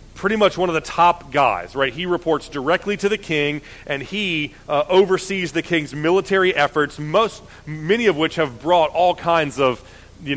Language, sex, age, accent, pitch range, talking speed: English, male, 30-49, American, 140-175 Hz, 185 wpm